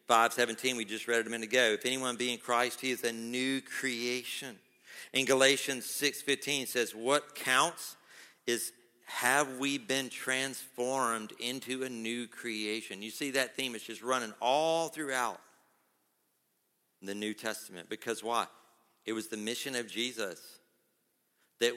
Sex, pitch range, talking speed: male, 110-130 Hz, 150 wpm